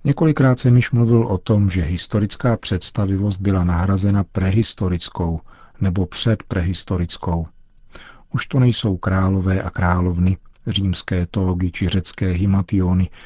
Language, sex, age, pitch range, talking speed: Czech, male, 50-69, 90-110 Hz, 115 wpm